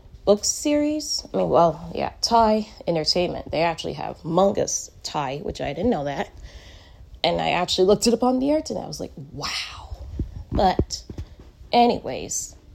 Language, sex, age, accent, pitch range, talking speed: English, female, 20-39, American, 165-235 Hz, 160 wpm